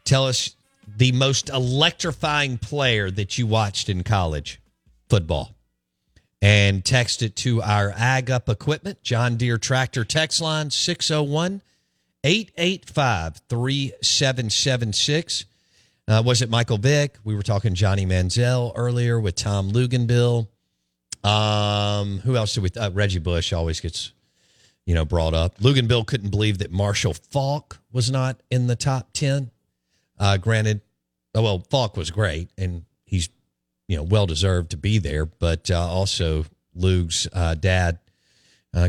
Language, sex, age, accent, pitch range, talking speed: English, male, 50-69, American, 90-120 Hz, 135 wpm